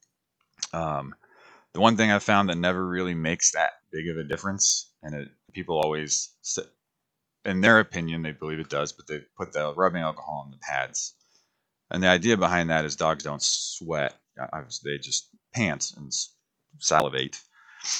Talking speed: 165 wpm